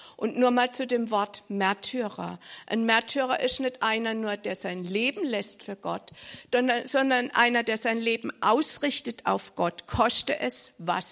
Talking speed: 160 wpm